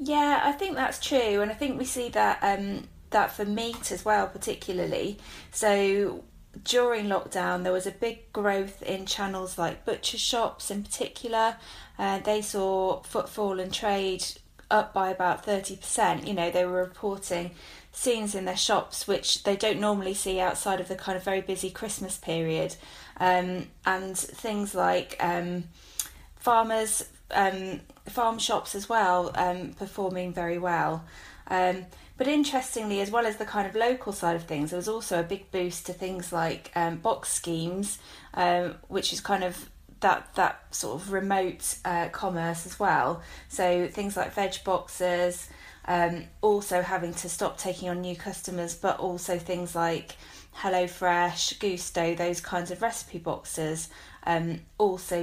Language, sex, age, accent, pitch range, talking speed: English, female, 20-39, British, 180-205 Hz, 160 wpm